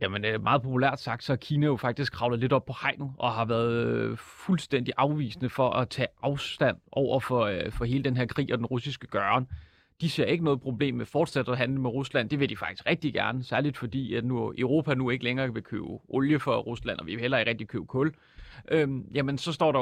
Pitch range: 125-150 Hz